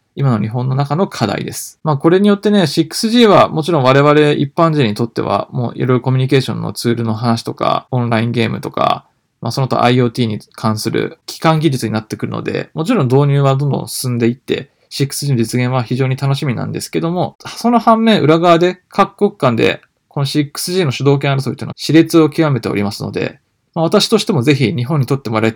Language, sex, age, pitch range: Japanese, male, 20-39, 115-160 Hz